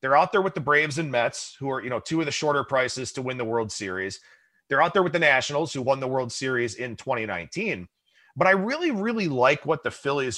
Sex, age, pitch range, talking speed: male, 30-49, 125-185 Hz, 250 wpm